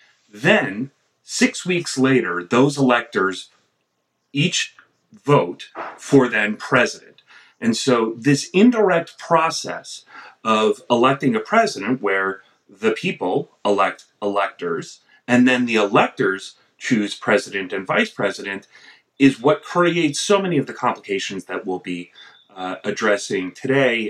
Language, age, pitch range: English, 30-49, 105-160 Hz